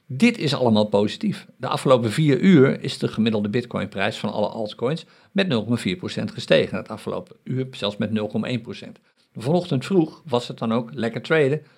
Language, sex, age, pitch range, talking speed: Dutch, male, 50-69, 115-165 Hz, 165 wpm